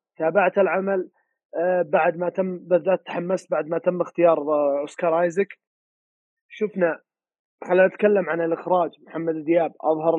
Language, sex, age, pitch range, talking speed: Arabic, male, 20-39, 155-190 Hz, 125 wpm